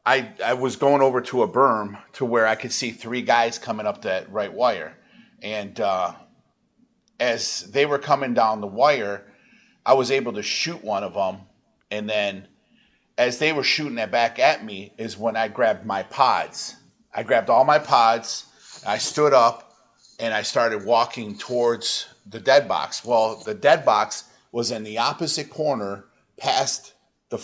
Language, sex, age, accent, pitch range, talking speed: English, male, 40-59, American, 110-135 Hz, 175 wpm